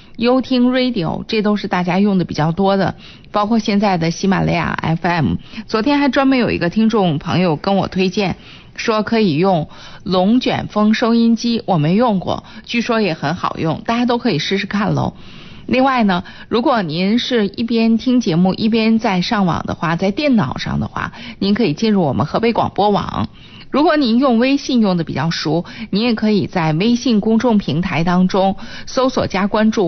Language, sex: Chinese, female